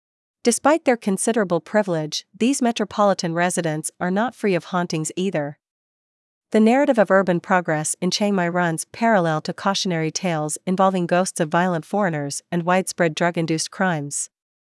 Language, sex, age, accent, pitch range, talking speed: English, female, 40-59, American, 170-205 Hz, 145 wpm